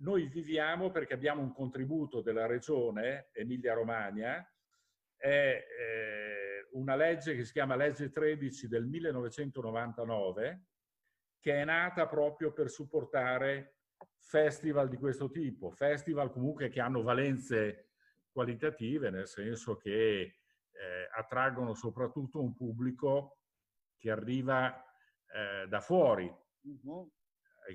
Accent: native